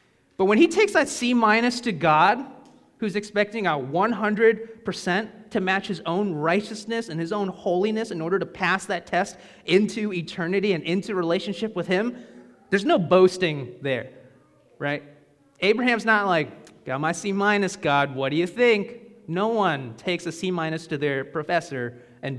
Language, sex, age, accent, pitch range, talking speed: English, male, 30-49, American, 145-205 Hz, 165 wpm